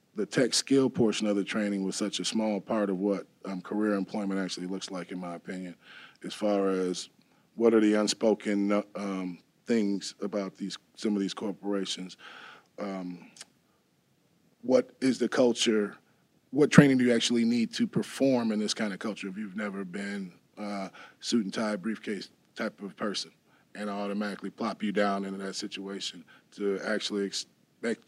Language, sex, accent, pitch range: English, male, American, 100-110 Hz